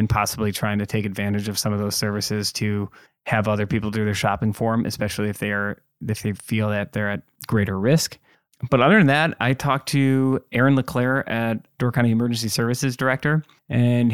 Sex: male